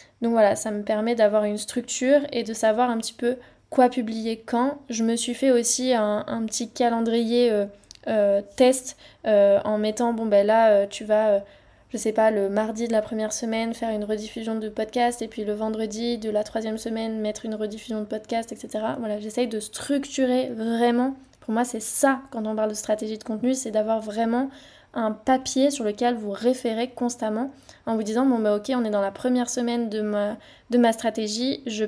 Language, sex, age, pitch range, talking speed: French, female, 20-39, 215-245 Hz, 210 wpm